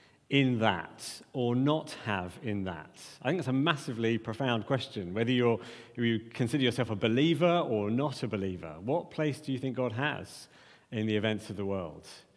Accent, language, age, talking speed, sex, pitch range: British, English, 40-59, 180 wpm, male, 115-150 Hz